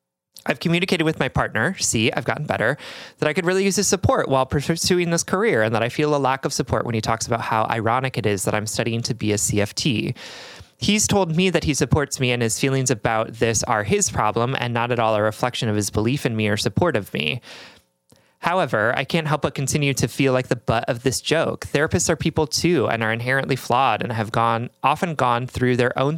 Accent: American